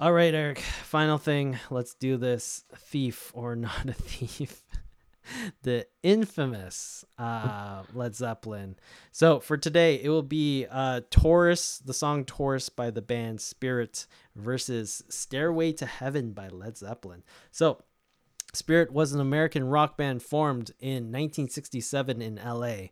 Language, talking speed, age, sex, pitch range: English, 130 wpm, 20-39, male, 115-150 Hz